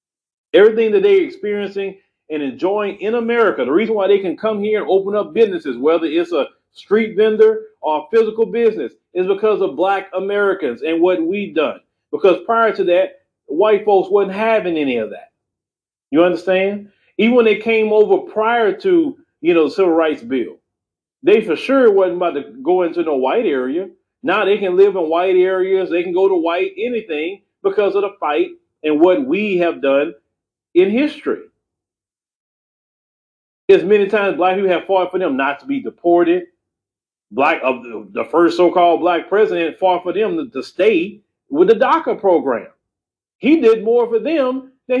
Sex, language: male, English